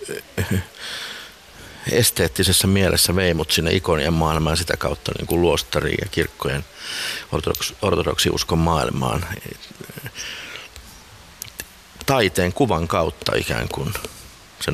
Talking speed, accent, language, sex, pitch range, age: 90 wpm, native, Finnish, male, 80-95 Hz, 50-69